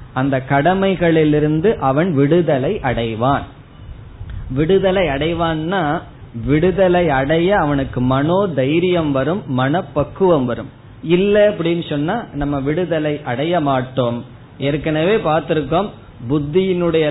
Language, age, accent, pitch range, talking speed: Tamil, 20-39, native, 130-175 Hz, 95 wpm